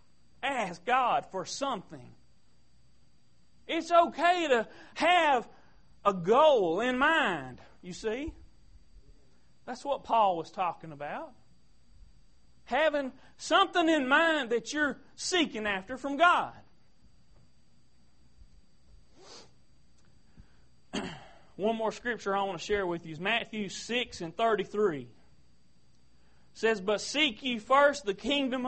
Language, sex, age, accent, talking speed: English, male, 40-59, American, 110 wpm